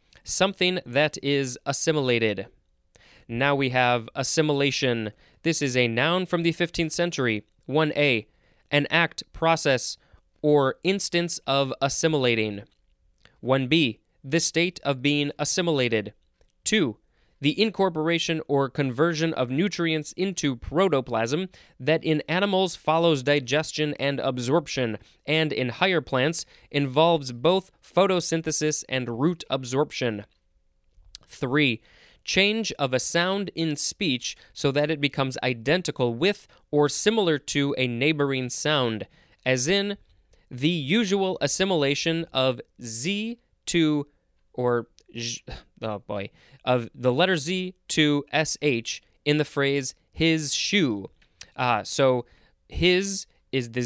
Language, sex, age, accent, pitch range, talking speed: English, male, 20-39, American, 125-165 Hz, 115 wpm